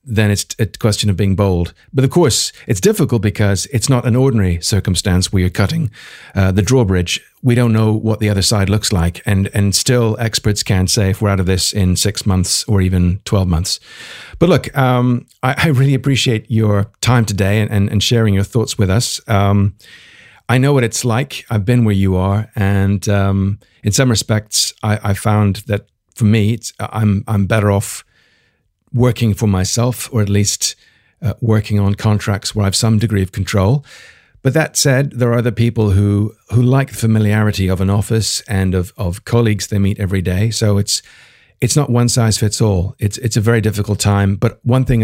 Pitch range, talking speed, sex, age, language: 100-120 Hz, 205 wpm, male, 50-69, English